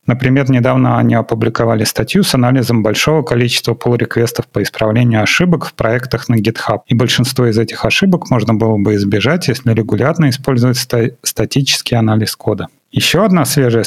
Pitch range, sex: 115-135 Hz, male